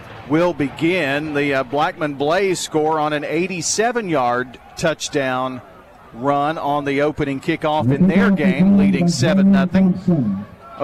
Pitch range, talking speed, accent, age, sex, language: 145-190 Hz, 115 wpm, American, 40-59, male, English